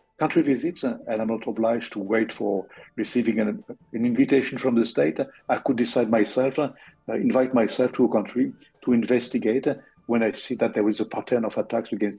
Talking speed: 190 wpm